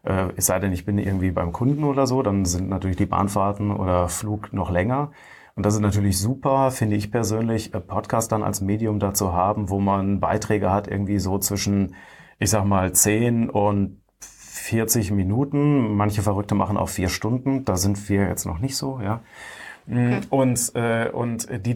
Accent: German